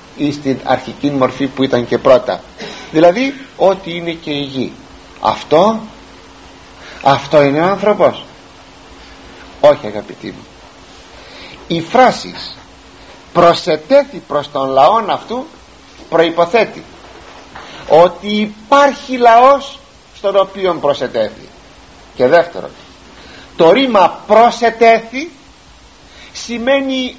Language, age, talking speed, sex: Greek, 50-69, 95 wpm, male